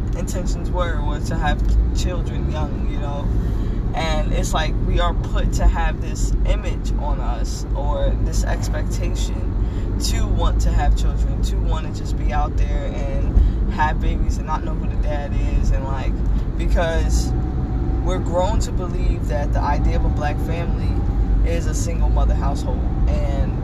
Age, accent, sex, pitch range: 20-39, American, female, 90-105 Hz